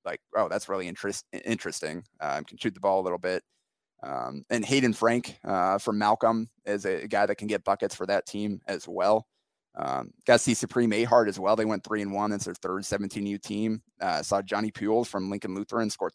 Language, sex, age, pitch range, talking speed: English, male, 20-39, 100-120 Hz, 225 wpm